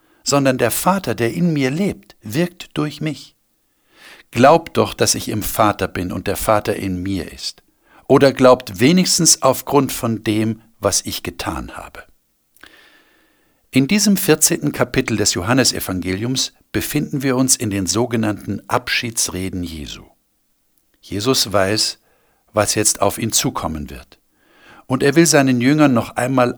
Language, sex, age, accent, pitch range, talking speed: German, male, 60-79, German, 95-135 Hz, 140 wpm